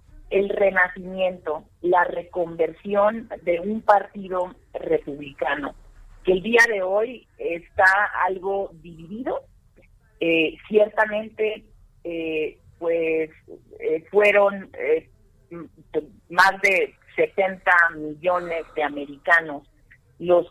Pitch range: 165-210 Hz